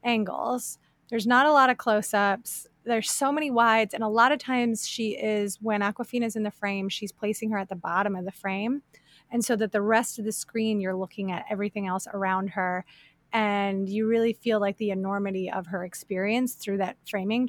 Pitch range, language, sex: 195-230 Hz, English, female